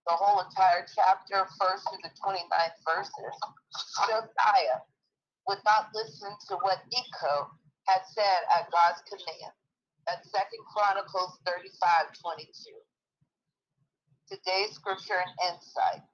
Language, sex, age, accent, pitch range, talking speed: English, female, 50-69, American, 175-215 Hz, 110 wpm